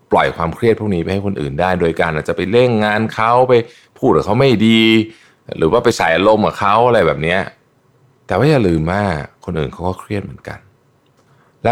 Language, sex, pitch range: Thai, male, 80-130 Hz